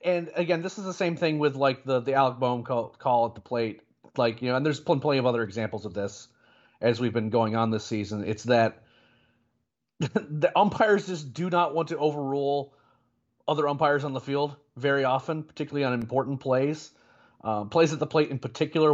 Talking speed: 205 wpm